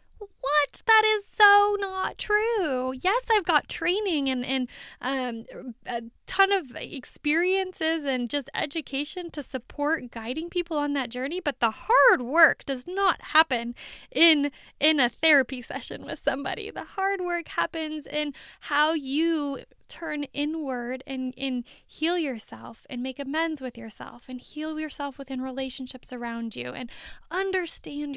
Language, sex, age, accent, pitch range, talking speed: English, female, 10-29, American, 250-320 Hz, 145 wpm